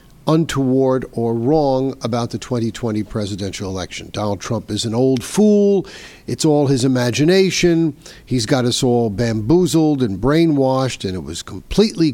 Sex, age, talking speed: male, 50-69, 145 wpm